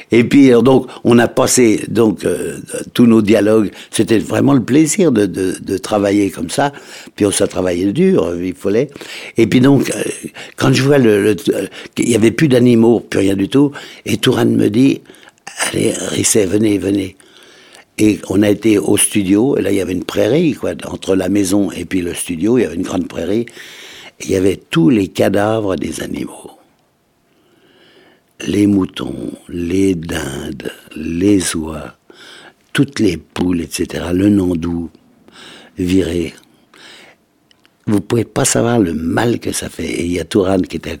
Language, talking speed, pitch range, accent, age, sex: French, 175 wpm, 90-110 Hz, French, 60-79, male